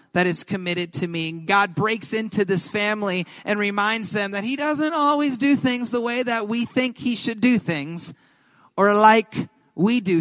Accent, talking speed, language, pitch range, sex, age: American, 190 wpm, English, 185-245 Hz, male, 30-49